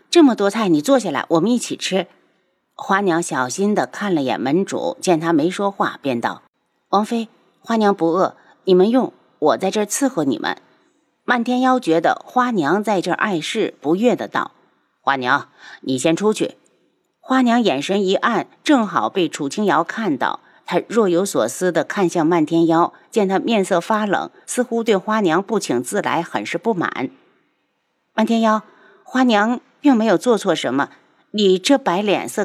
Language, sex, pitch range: Chinese, female, 175-245 Hz